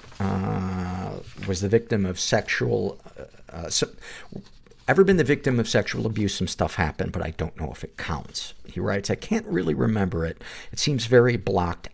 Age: 50-69